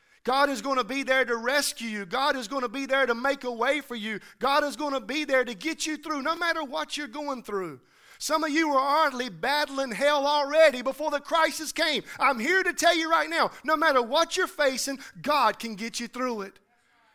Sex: male